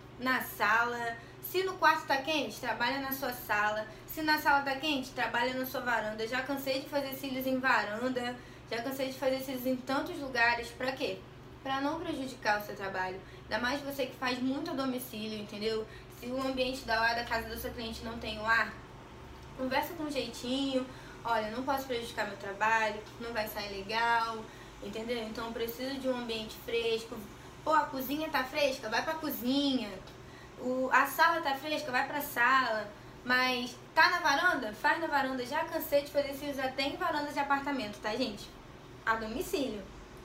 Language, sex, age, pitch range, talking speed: Portuguese, female, 20-39, 225-275 Hz, 185 wpm